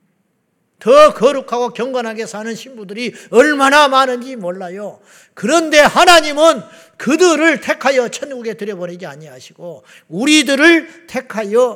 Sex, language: male, Korean